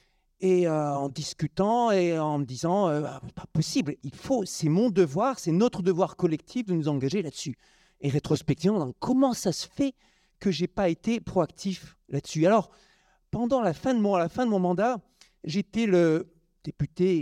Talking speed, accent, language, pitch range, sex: 175 wpm, French, French, 160-205 Hz, male